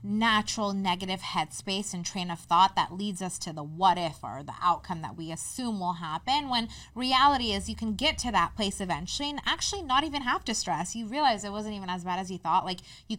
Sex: female